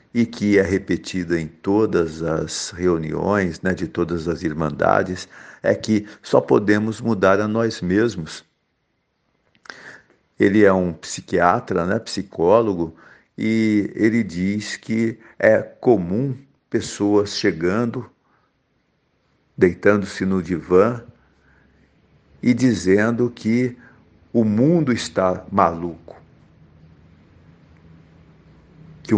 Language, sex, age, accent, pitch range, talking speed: Portuguese, male, 60-79, Brazilian, 90-120 Hz, 95 wpm